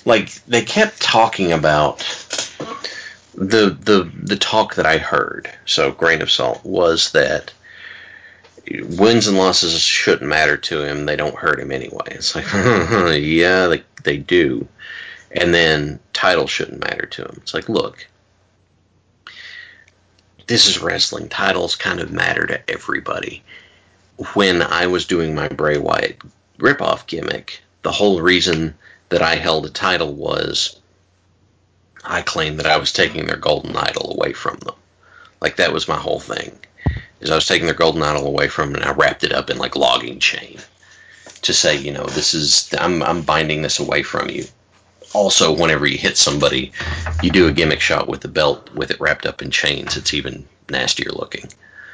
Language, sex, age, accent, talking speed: English, male, 40-59, American, 170 wpm